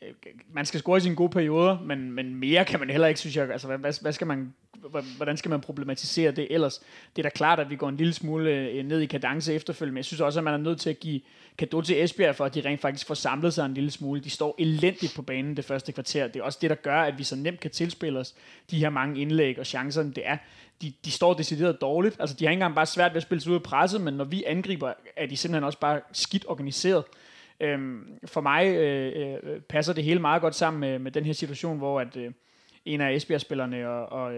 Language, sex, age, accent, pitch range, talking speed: Danish, male, 30-49, native, 140-165 Hz, 255 wpm